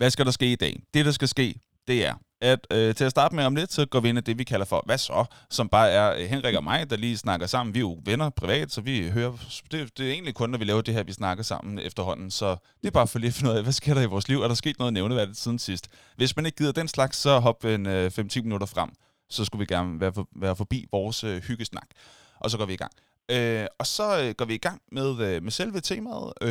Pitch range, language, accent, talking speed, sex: 105-150 Hz, Danish, native, 285 wpm, male